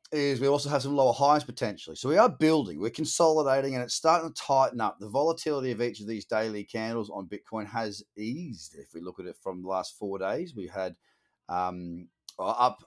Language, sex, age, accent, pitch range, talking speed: English, male, 30-49, Australian, 105-135 Hz, 210 wpm